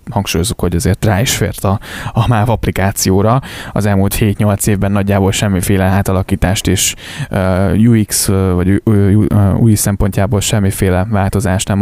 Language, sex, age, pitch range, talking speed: Hungarian, male, 10-29, 100-115 Hz, 125 wpm